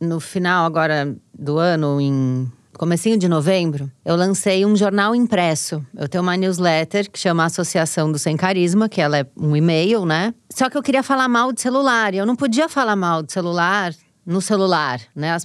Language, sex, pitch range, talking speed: Portuguese, female, 185-255 Hz, 195 wpm